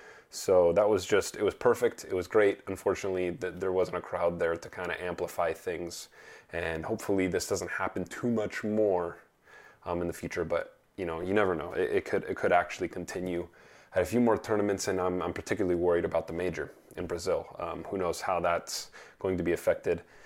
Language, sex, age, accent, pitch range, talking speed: English, male, 20-39, American, 90-120 Hz, 215 wpm